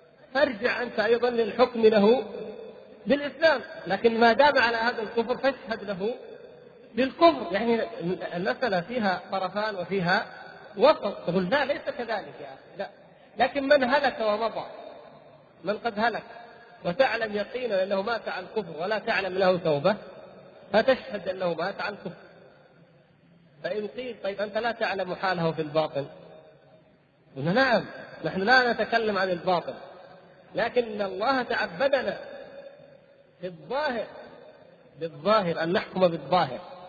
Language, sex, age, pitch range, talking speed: Arabic, male, 40-59, 190-250 Hz, 120 wpm